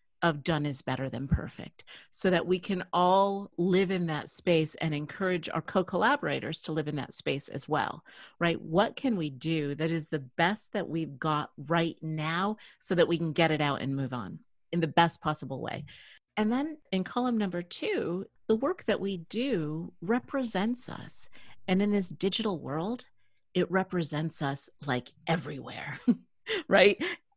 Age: 40-59